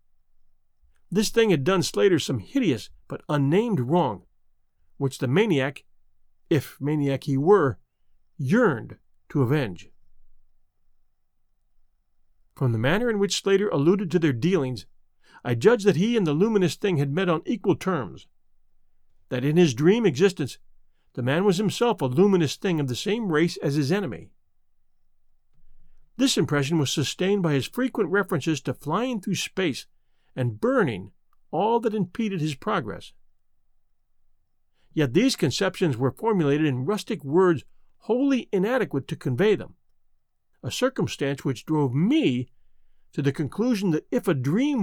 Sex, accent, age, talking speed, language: male, American, 40-59, 140 wpm, English